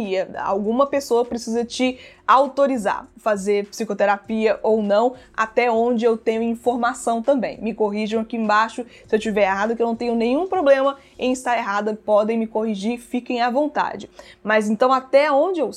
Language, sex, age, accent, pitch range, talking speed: Portuguese, female, 20-39, Brazilian, 215-260 Hz, 160 wpm